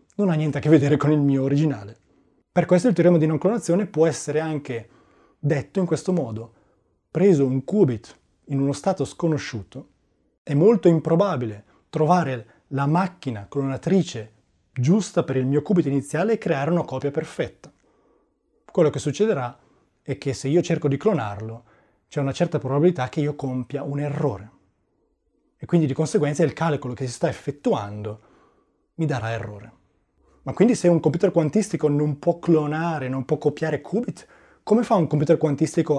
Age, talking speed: 30-49, 165 wpm